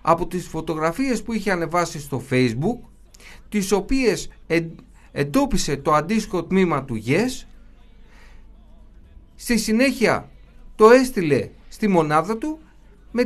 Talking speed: 120 wpm